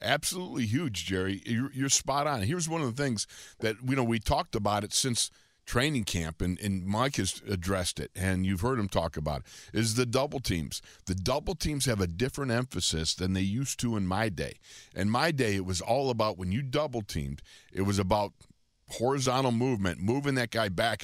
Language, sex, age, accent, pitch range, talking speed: English, male, 50-69, American, 95-125 Hz, 205 wpm